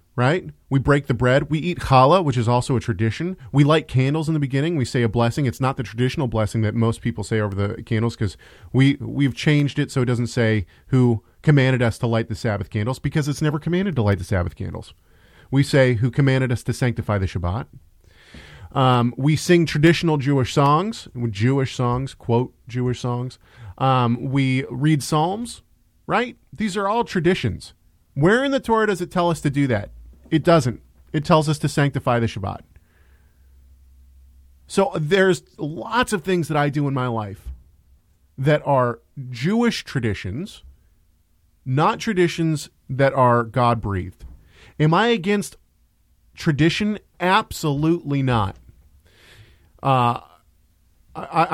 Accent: American